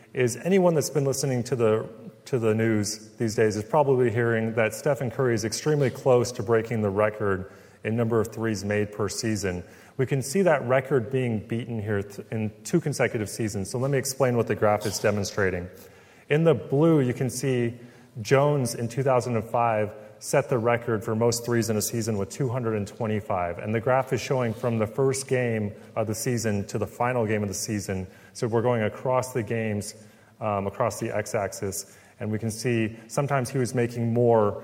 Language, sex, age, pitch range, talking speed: English, male, 30-49, 105-125 Hz, 190 wpm